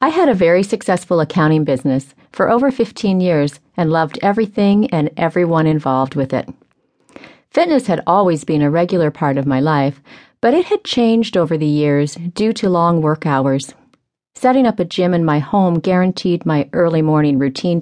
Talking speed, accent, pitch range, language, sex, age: 180 wpm, American, 150-195 Hz, English, female, 40-59